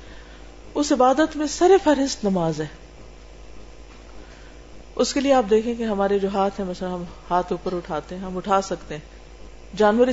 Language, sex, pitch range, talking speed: Urdu, female, 165-255 Hz, 160 wpm